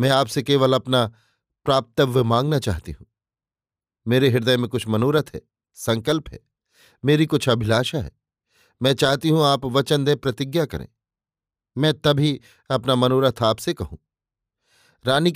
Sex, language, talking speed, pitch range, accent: male, Hindi, 135 wpm, 115-140 Hz, native